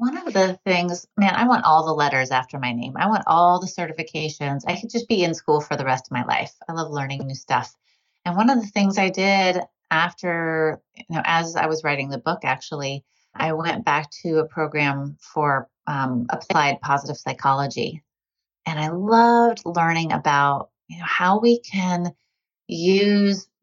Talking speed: 190 wpm